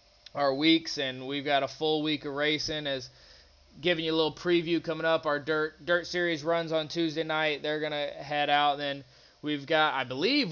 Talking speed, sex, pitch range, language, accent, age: 205 wpm, male, 145-170 Hz, English, American, 20-39